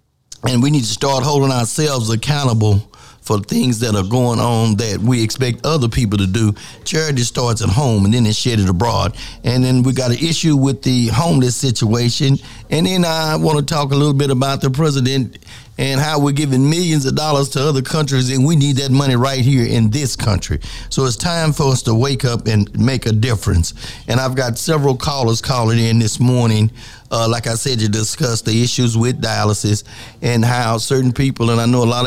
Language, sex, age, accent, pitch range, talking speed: English, male, 50-69, American, 110-125 Hz, 210 wpm